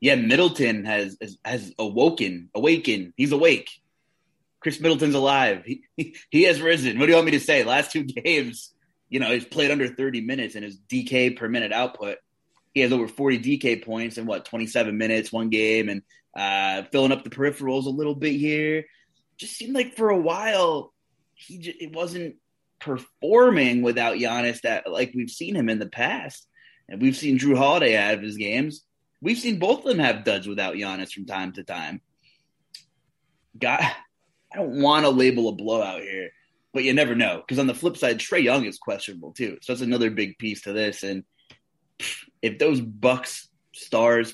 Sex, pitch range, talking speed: male, 110-150 Hz, 190 wpm